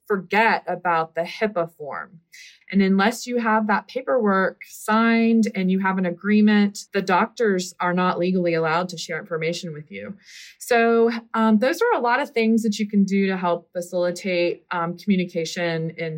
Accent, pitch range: American, 170-215 Hz